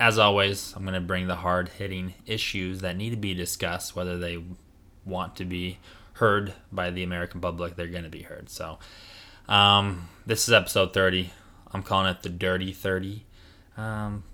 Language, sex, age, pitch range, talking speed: English, male, 20-39, 90-95 Hz, 175 wpm